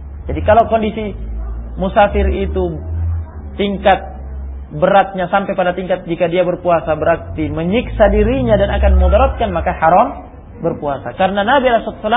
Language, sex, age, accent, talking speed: Indonesian, male, 40-59, native, 125 wpm